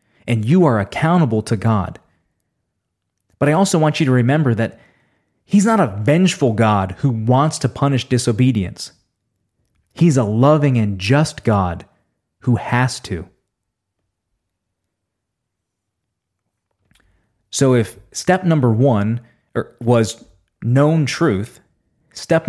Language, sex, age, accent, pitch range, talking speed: English, male, 20-39, American, 105-135 Hz, 110 wpm